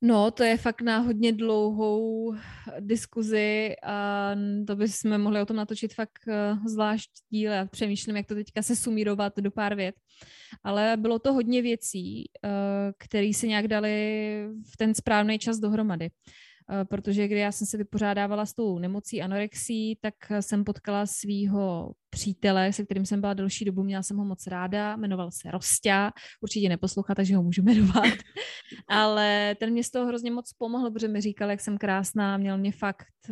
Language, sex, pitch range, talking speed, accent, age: Czech, female, 200-225 Hz, 165 wpm, native, 20-39